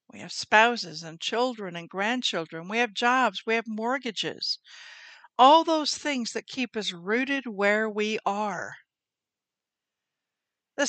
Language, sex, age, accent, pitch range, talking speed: English, female, 60-79, American, 195-260 Hz, 130 wpm